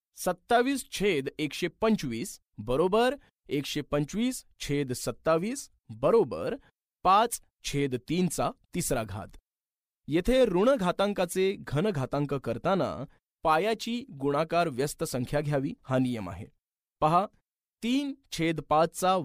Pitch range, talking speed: 140-205 Hz, 95 wpm